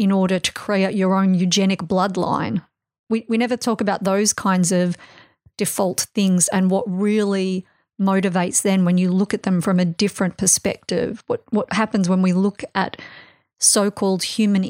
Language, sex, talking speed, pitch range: English, female, 165 wpm, 185-210 Hz